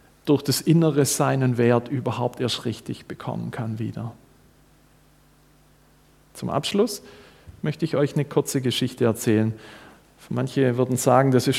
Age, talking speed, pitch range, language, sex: 40-59, 135 wpm, 125-165 Hz, German, male